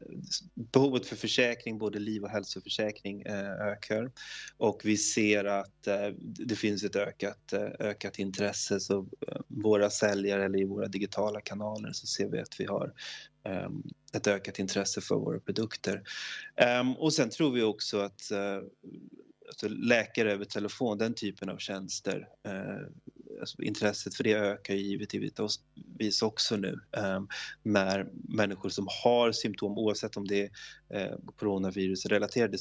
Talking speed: 125 wpm